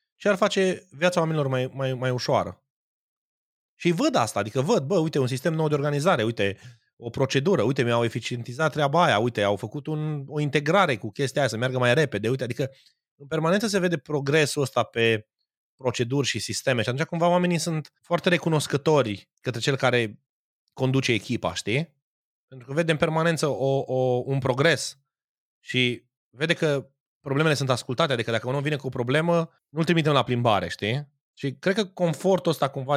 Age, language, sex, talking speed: 30-49, Romanian, male, 185 wpm